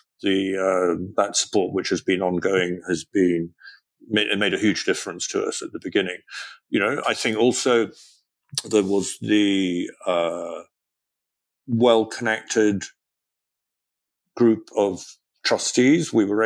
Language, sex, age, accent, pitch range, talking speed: English, male, 50-69, British, 90-110 Hz, 130 wpm